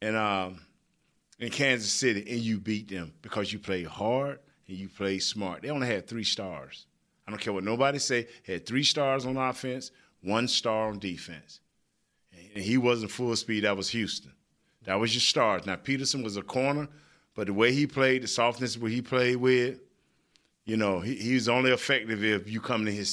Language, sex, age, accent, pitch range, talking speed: English, male, 40-59, American, 105-130 Hz, 200 wpm